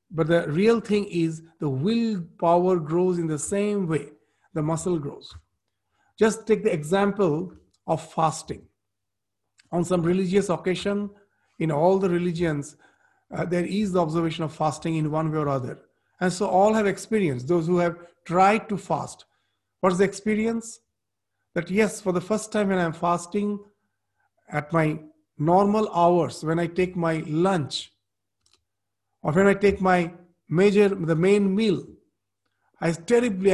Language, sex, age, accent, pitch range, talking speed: English, male, 50-69, Indian, 155-200 Hz, 150 wpm